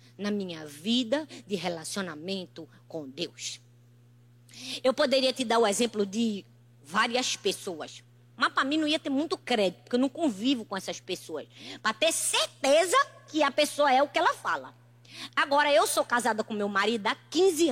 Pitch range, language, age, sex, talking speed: 200-330 Hz, Portuguese, 20-39, female, 175 wpm